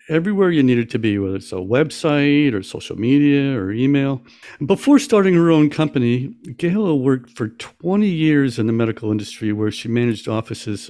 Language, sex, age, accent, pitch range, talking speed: English, male, 60-79, American, 110-145 Hz, 175 wpm